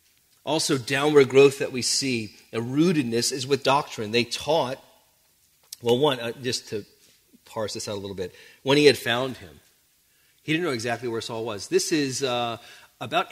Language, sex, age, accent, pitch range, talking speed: English, male, 40-59, American, 115-155 Hz, 180 wpm